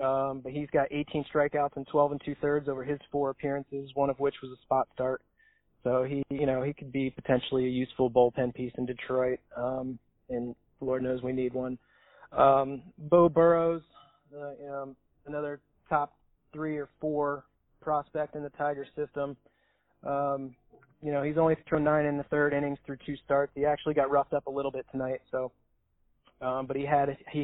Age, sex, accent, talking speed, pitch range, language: 30-49, male, American, 190 wpm, 130-145 Hz, English